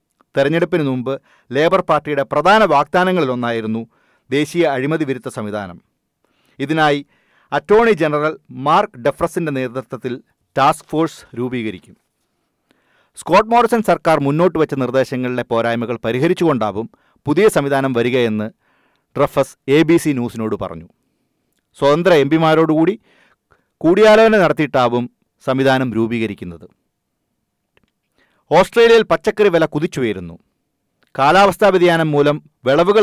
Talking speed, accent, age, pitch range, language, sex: 90 wpm, native, 40-59, 125-170 Hz, Malayalam, male